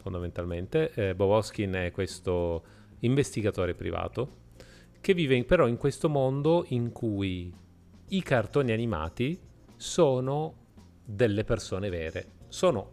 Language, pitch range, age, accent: Italian, 95-125 Hz, 30-49, native